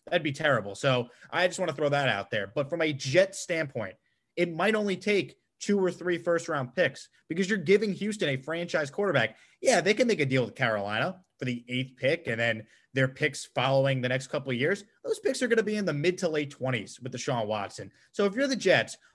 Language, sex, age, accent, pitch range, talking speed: English, male, 30-49, American, 135-185 Hz, 240 wpm